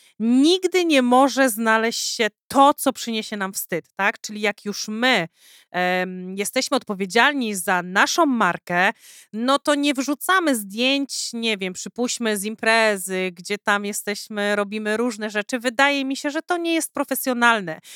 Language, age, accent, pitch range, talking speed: Polish, 30-49, native, 215-280 Hz, 145 wpm